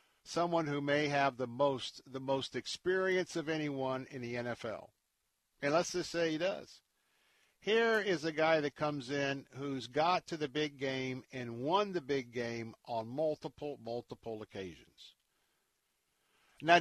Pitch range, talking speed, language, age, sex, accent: 130-160 Hz, 155 wpm, English, 50-69, male, American